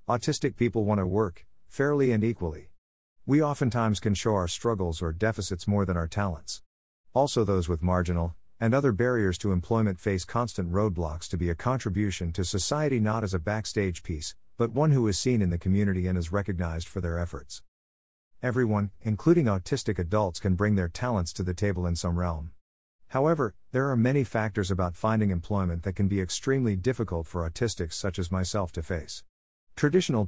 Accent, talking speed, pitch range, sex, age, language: American, 180 wpm, 85-110 Hz, male, 50-69, English